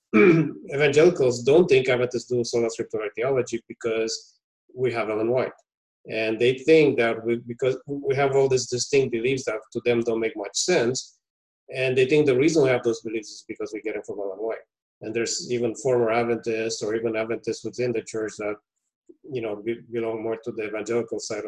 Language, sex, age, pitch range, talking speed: English, male, 30-49, 115-140 Hz, 190 wpm